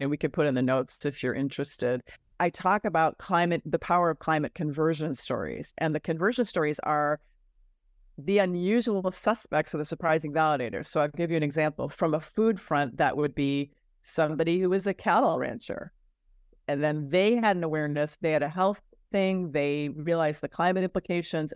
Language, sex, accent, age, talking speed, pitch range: English, female, American, 40-59, 185 wpm, 150-185 Hz